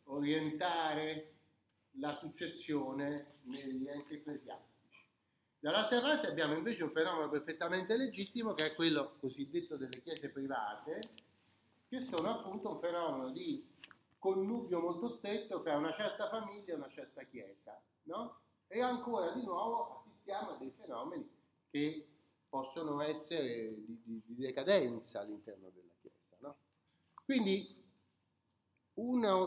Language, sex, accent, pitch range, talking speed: Italian, male, native, 140-195 Hz, 120 wpm